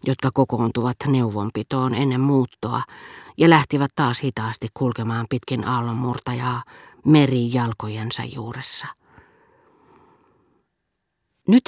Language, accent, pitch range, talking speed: Finnish, native, 120-150 Hz, 75 wpm